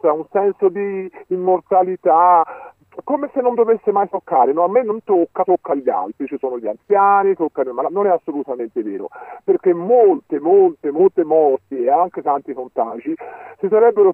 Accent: native